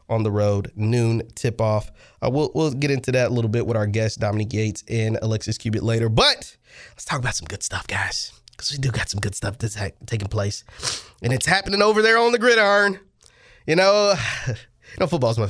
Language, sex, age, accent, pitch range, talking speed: English, male, 20-39, American, 105-130 Hz, 225 wpm